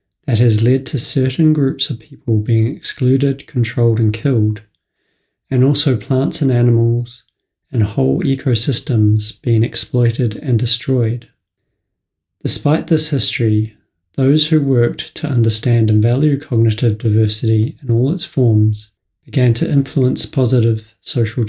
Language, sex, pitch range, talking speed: English, male, 110-135 Hz, 130 wpm